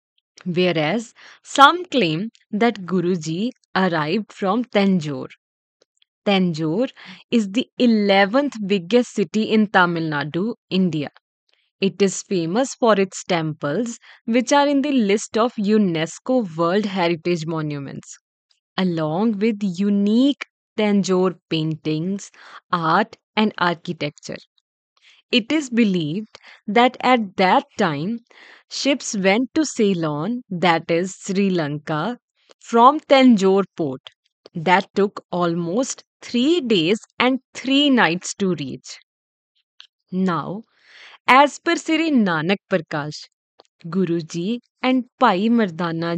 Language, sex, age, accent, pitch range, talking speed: English, female, 20-39, Indian, 175-240 Hz, 105 wpm